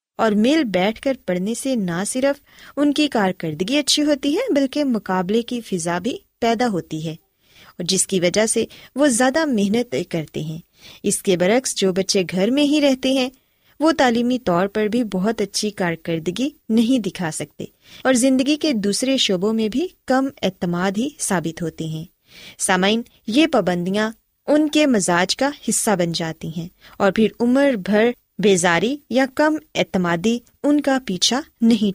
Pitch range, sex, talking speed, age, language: 185-270 Hz, female, 165 wpm, 20-39, Urdu